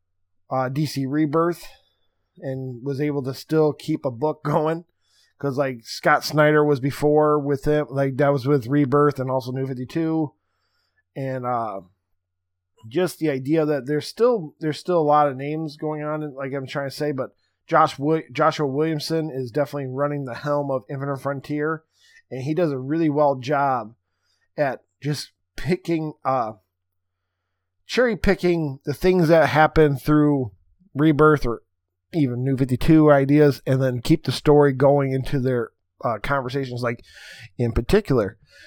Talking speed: 155 wpm